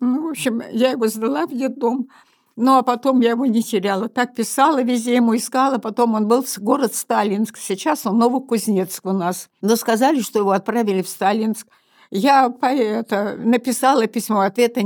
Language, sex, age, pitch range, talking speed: Russian, female, 60-79, 195-245 Hz, 180 wpm